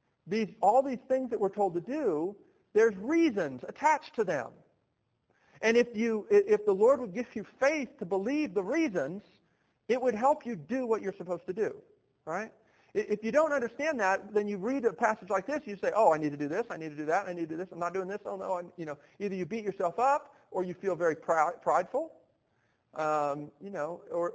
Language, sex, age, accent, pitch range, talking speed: English, male, 50-69, American, 165-235 Hz, 225 wpm